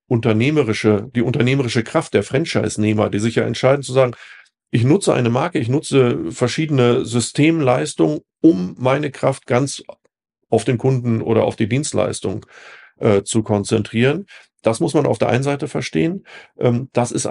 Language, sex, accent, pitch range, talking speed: German, male, German, 110-135 Hz, 155 wpm